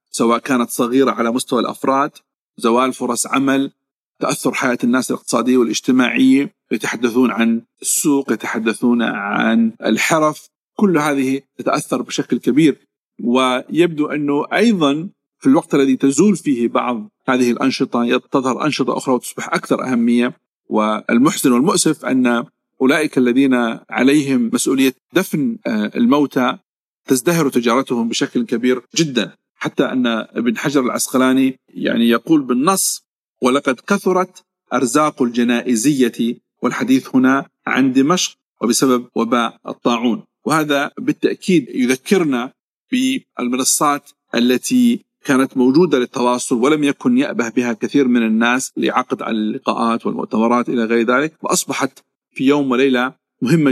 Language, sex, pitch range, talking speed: Arabic, male, 120-155 Hz, 115 wpm